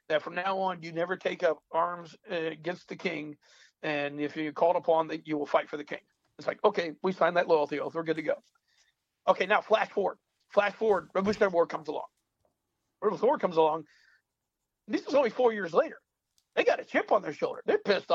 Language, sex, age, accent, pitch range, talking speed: English, male, 50-69, American, 165-235 Hz, 210 wpm